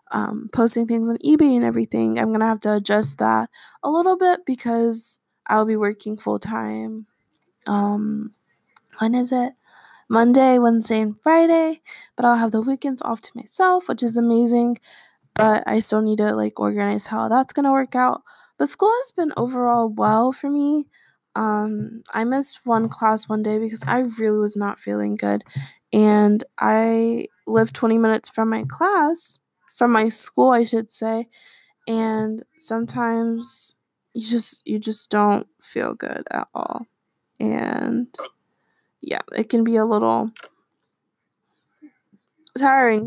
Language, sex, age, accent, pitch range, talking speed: English, female, 10-29, American, 215-250 Hz, 150 wpm